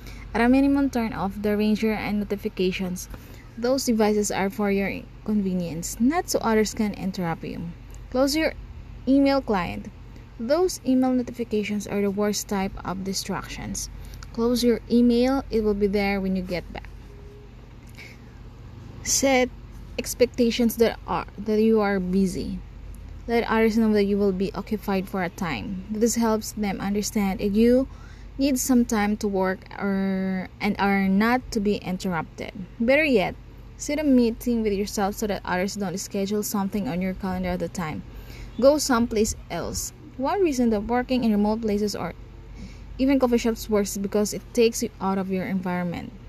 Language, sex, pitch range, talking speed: English, female, 190-230 Hz, 160 wpm